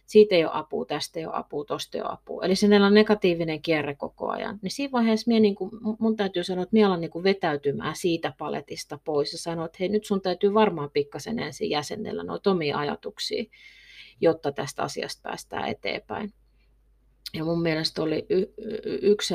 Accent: native